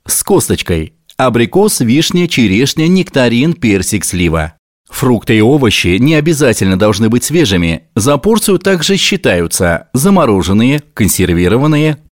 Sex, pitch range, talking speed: male, 95-155 Hz, 110 wpm